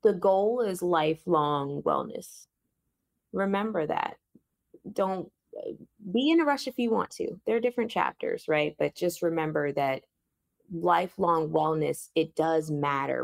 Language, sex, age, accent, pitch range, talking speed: English, female, 20-39, American, 140-175 Hz, 135 wpm